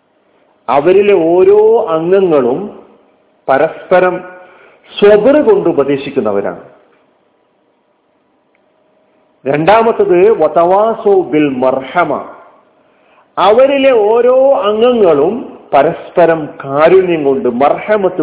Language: Malayalam